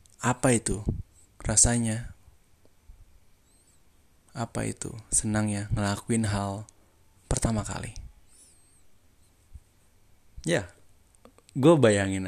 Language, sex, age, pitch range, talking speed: Indonesian, male, 20-39, 90-115 Hz, 70 wpm